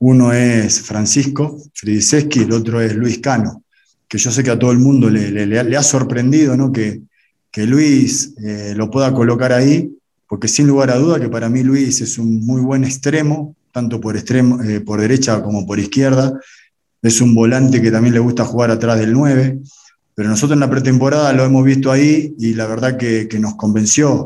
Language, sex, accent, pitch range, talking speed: Spanish, male, Argentinian, 110-135 Hz, 195 wpm